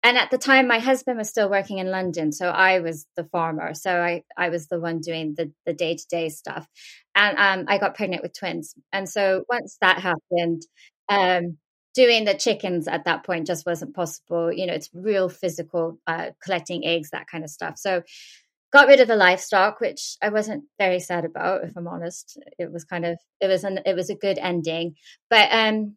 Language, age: English, 20-39